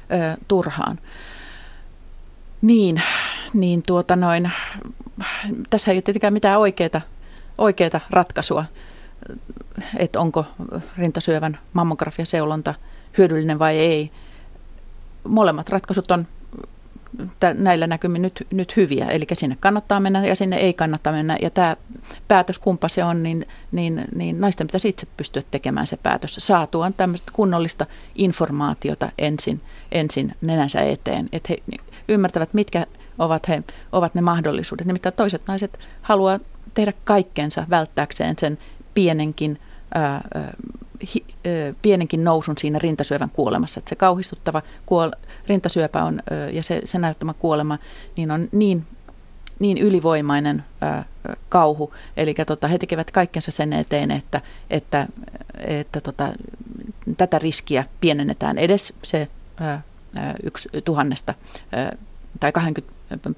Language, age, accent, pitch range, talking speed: Finnish, 30-49, native, 155-195 Hz, 120 wpm